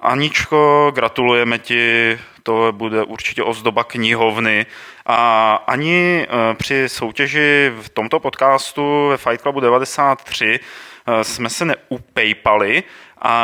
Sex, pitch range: male, 115-140 Hz